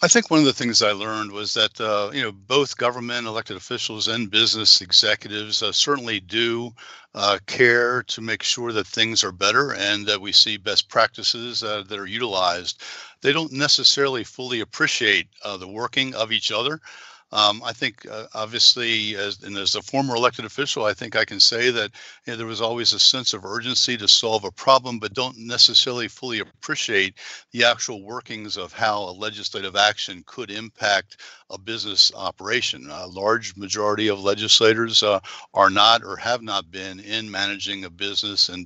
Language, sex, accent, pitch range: English, male, American, 105-120 Hz